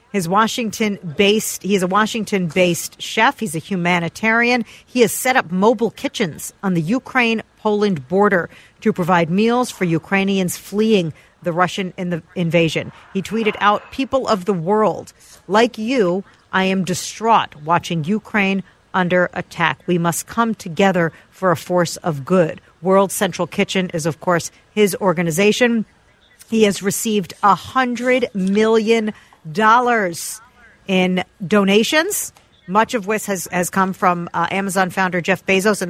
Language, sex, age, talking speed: English, female, 50-69, 140 wpm